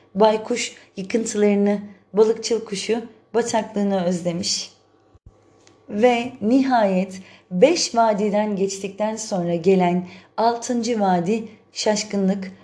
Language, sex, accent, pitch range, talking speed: Turkish, female, native, 180-220 Hz, 75 wpm